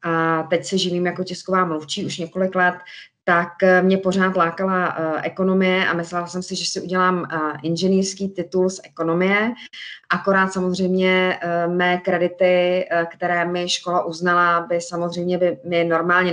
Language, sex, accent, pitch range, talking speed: Czech, female, native, 170-185 Hz, 145 wpm